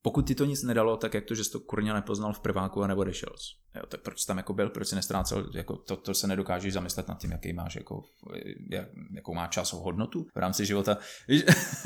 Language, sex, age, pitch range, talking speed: Czech, male, 20-39, 95-110 Hz, 235 wpm